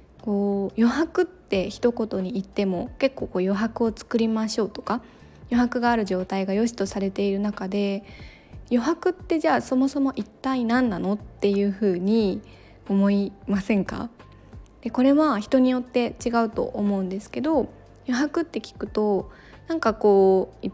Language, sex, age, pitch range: Japanese, female, 20-39, 200-255 Hz